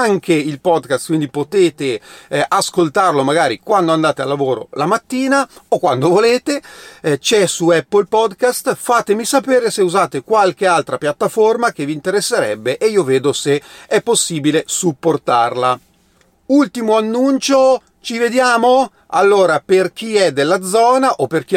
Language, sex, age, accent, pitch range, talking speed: Italian, male, 40-59, native, 150-230 Hz, 145 wpm